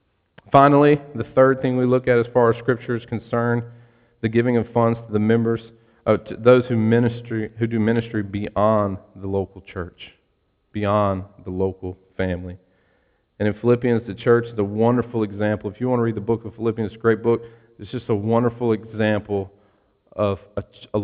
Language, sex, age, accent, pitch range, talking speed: English, male, 40-59, American, 100-120 Hz, 185 wpm